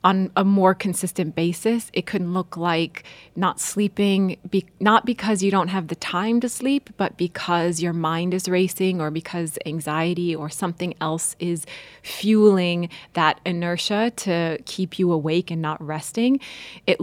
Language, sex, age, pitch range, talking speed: English, female, 20-39, 165-205 Hz, 155 wpm